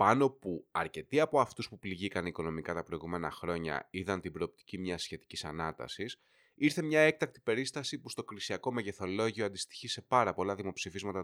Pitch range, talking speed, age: 95-130 Hz, 160 wpm, 30-49